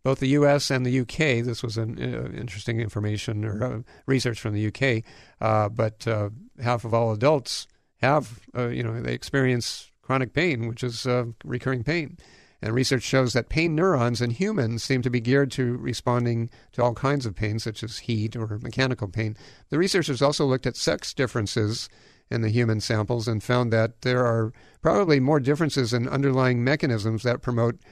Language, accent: English, American